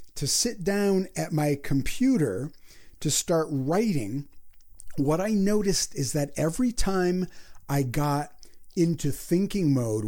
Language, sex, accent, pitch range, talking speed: English, male, American, 125-165 Hz, 125 wpm